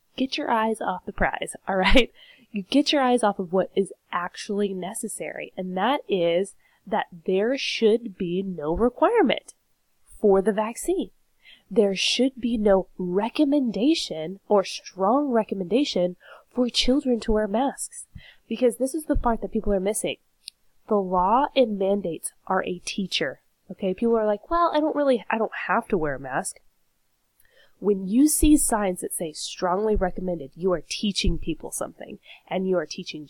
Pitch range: 180-240 Hz